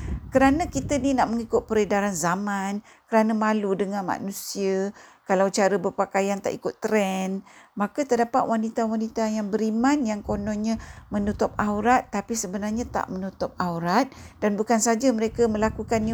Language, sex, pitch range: Malay, female, 195-245 Hz